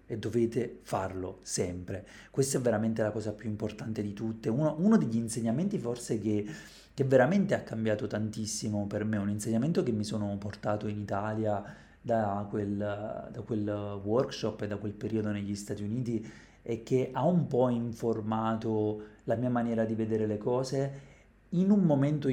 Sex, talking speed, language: male, 165 wpm, Italian